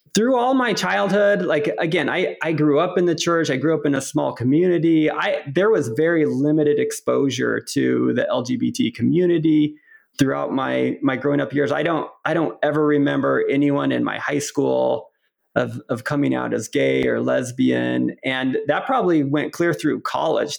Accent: American